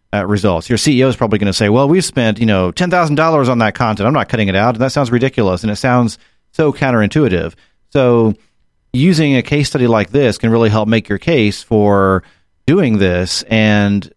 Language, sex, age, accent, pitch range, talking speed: English, male, 40-59, American, 100-125 Hz, 210 wpm